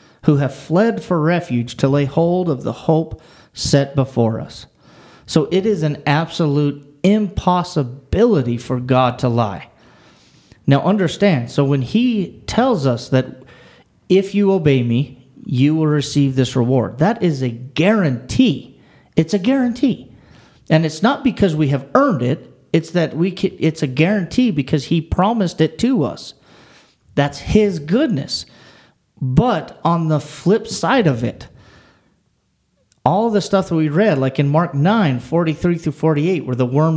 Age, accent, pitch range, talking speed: 40-59, American, 130-175 Hz, 155 wpm